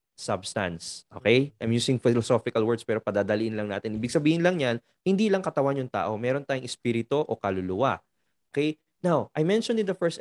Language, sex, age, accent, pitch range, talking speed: English, male, 20-39, Filipino, 120-180 Hz, 180 wpm